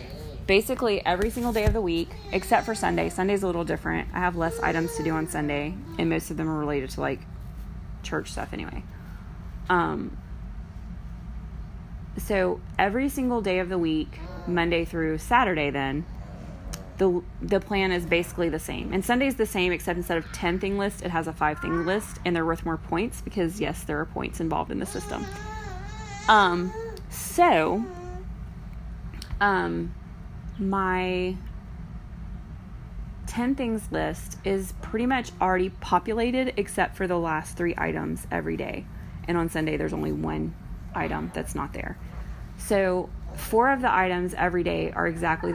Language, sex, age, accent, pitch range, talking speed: English, female, 20-39, American, 160-195 Hz, 155 wpm